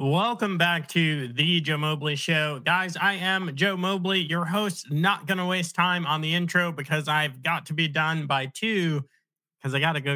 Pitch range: 135-170 Hz